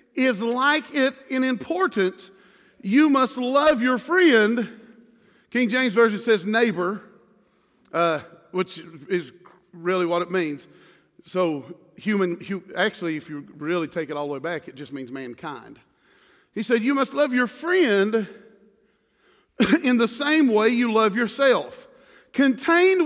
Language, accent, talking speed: English, American, 140 wpm